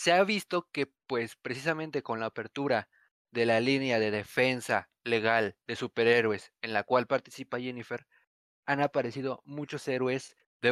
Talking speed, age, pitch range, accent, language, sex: 150 wpm, 20-39, 125-165 Hz, Mexican, English, male